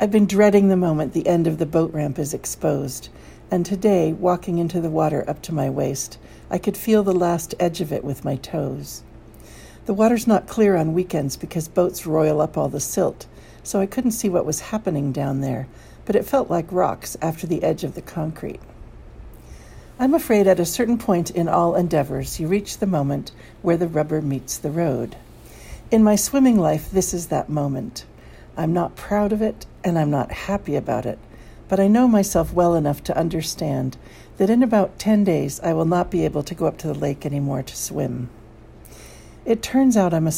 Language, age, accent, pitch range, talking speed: English, 60-79, American, 150-200 Hz, 205 wpm